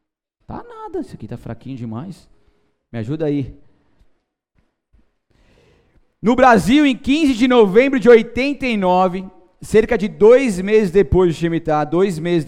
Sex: male